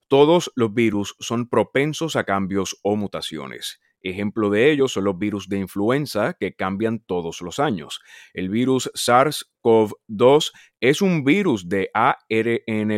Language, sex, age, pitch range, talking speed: Spanish, male, 30-49, 95-120 Hz, 140 wpm